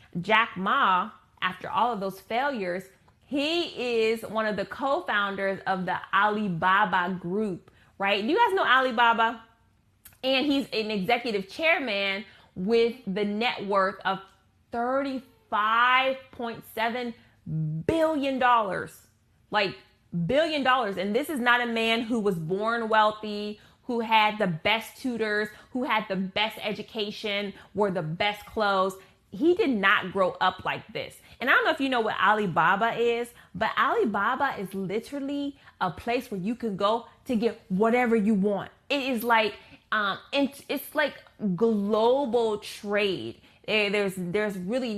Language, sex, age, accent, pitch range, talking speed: English, female, 20-39, American, 195-240 Hz, 140 wpm